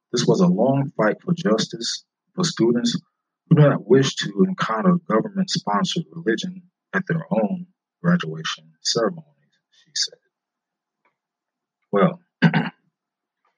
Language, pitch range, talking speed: English, 160-190 Hz, 110 wpm